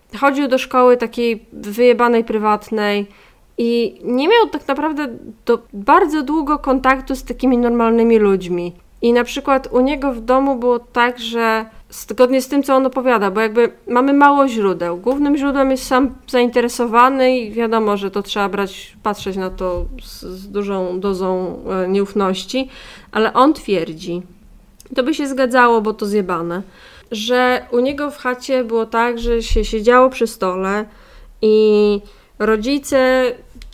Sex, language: female, Polish